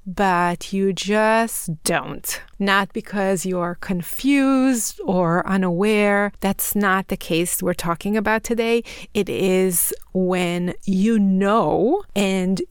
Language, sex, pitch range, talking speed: English, female, 180-215 Hz, 120 wpm